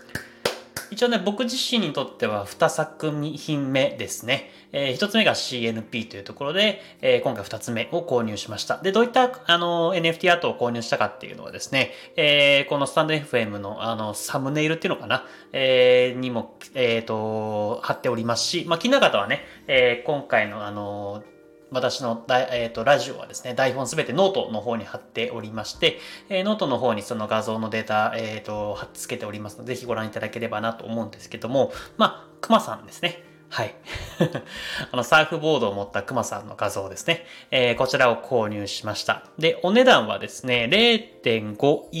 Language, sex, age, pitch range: Japanese, male, 20-39, 115-170 Hz